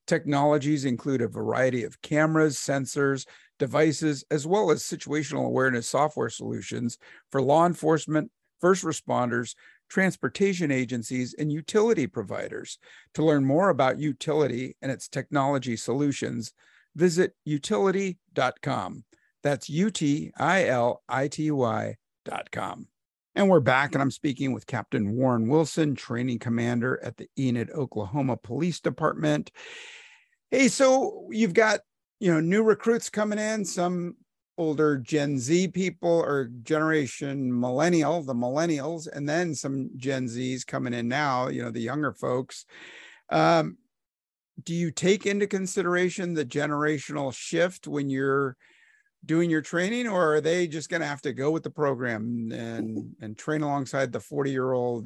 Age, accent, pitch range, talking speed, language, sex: 50-69, American, 130-170 Hz, 135 wpm, English, male